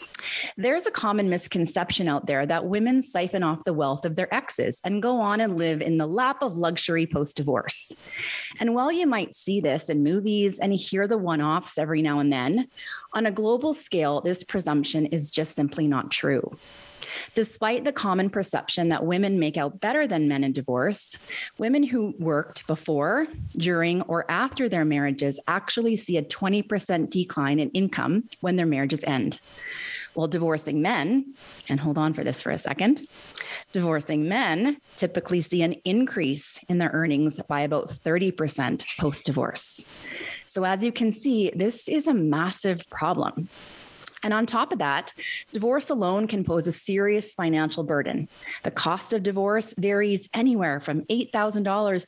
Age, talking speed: 30-49, 160 wpm